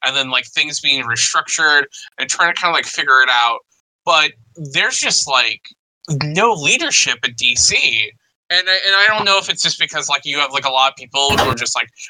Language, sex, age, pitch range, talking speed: English, male, 20-39, 125-160 Hz, 220 wpm